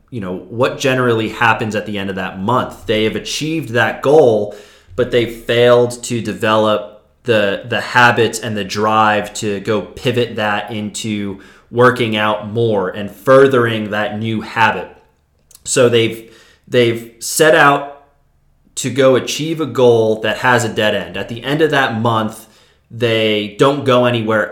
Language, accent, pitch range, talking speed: English, American, 105-125 Hz, 160 wpm